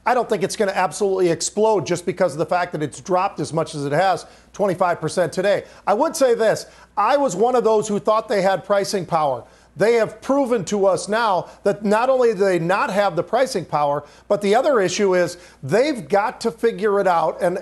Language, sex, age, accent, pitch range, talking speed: English, male, 50-69, American, 190-230 Hz, 225 wpm